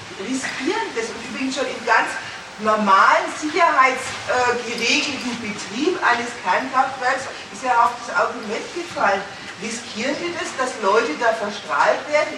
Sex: female